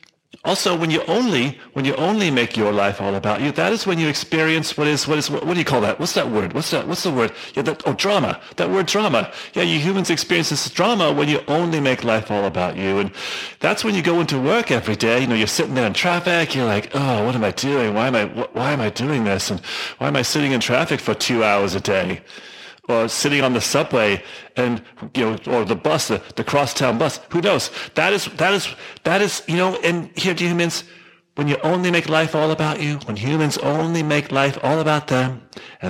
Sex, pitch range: male, 120-175 Hz